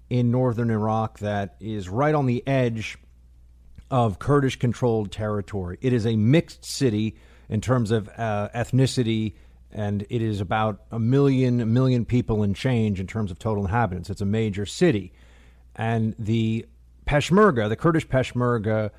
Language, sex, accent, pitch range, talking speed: English, male, American, 105-130 Hz, 155 wpm